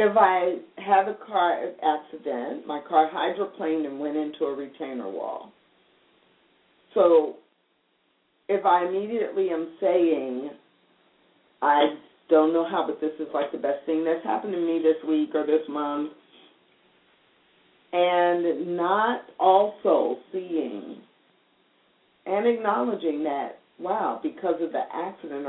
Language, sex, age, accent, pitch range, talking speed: English, female, 50-69, American, 155-195 Hz, 125 wpm